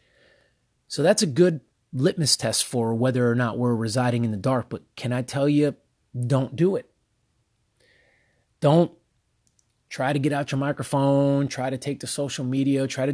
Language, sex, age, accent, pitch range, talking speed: English, male, 30-49, American, 115-140 Hz, 175 wpm